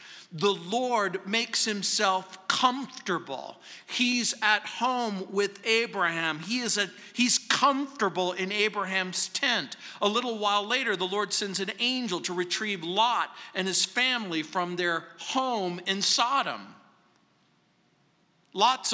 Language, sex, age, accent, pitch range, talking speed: English, male, 50-69, American, 175-225 Hz, 115 wpm